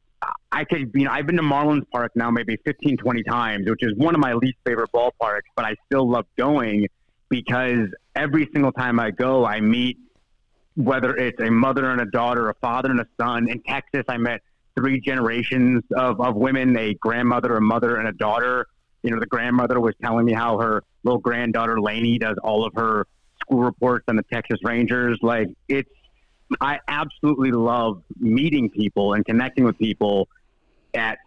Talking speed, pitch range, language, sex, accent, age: 190 wpm, 115-135 Hz, English, male, American, 30-49